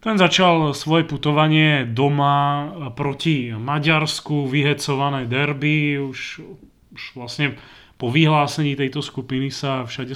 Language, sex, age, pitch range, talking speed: Slovak, male, 30-49, 130-150 Hz, 105 wpm